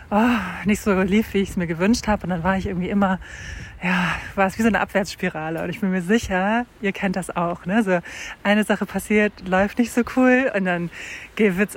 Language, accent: German, German